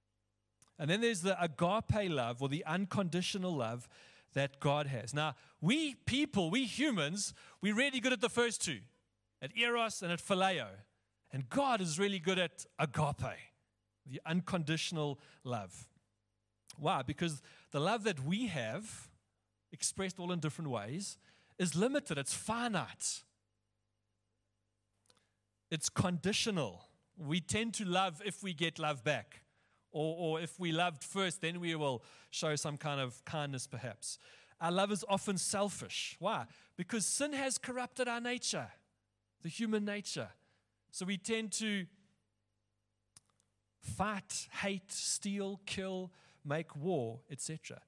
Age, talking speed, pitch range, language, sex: 40-59, 135 wpm, 120-195 Hz, English, male